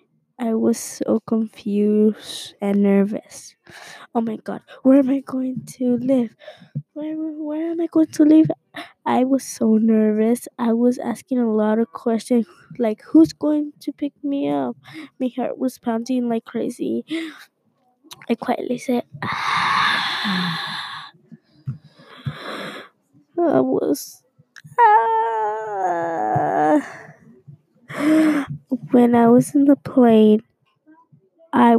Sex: female